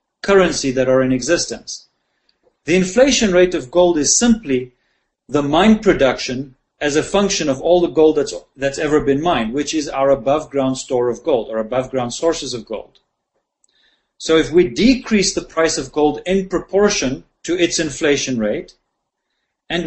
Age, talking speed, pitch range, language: 40-59, 165 wpm, 140-190 Hz, English